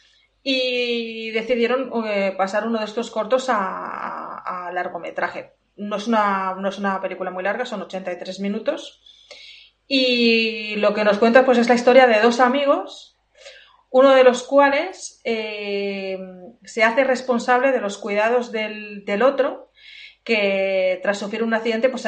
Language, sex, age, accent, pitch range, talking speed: Spanish, female, 30-49, Spanish, 195-240 Hz, 140 wpm